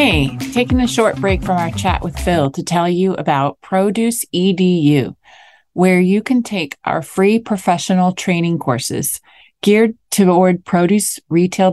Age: 30-49